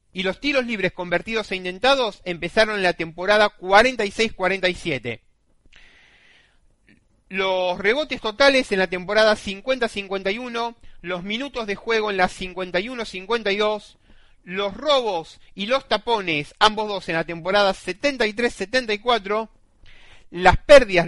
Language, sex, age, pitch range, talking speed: Spanish, male, 30-49, 165-220 Hz, 110 wpm